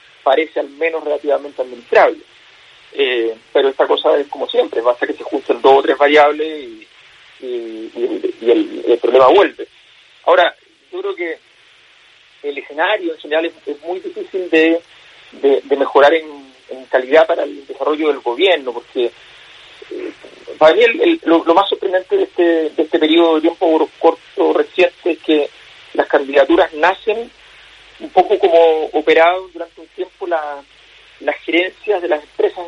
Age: 40-59